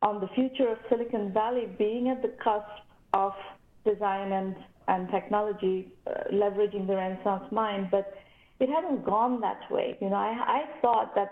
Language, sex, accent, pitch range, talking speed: English, female, Indian, 200-245 Hz, 170 wpm